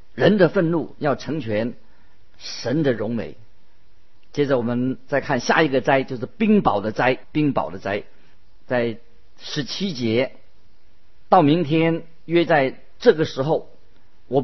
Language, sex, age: Chinese, male, 50-69